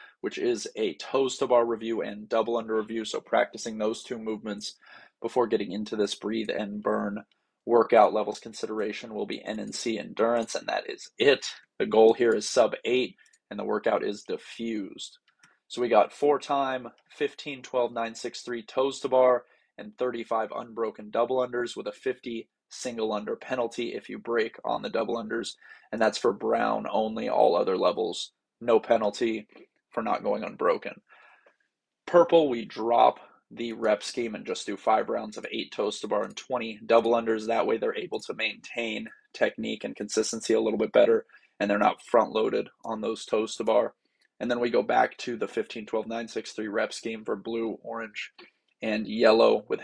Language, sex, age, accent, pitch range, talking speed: English, male, 20-39, American, 110-140 Hz, 185 wpm